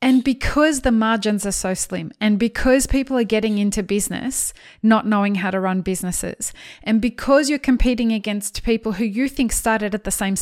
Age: 20-39